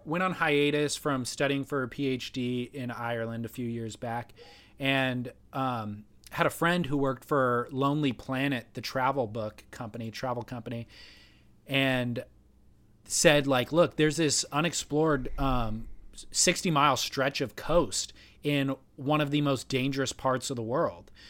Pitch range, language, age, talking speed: 120-150 Hz, English, 30-49, 150 wpm